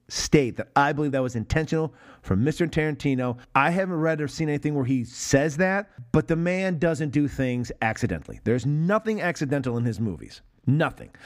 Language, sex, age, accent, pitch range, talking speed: English, male, 40-59, American, 120-170 Hz, 180 wpm